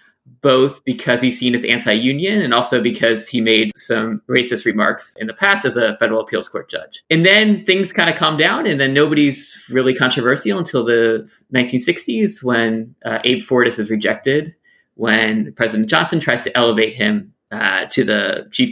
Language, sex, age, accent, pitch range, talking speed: English, male, 30-49, American, 120-180 Hz, 175 wpm